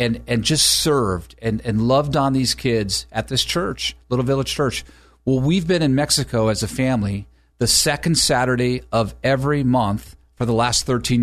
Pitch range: 115-160 Hz